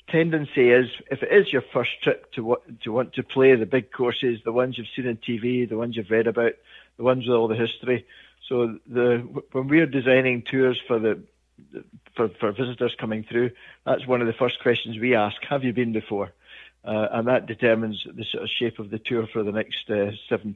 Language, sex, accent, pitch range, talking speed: English, male, British, 115-135 Hz, 215 wpm